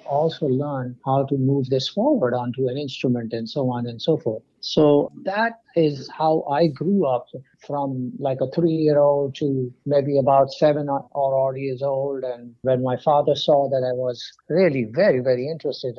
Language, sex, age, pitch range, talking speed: English, male, 60-79, 125-150 Hz, 175 wpm